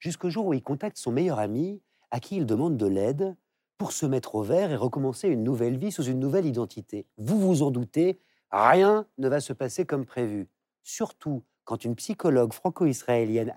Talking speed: 195 wpm